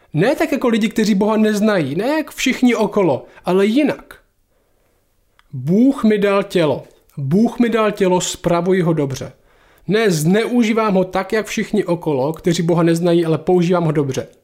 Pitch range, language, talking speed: 165-215 Hz, Czech, 160 wpm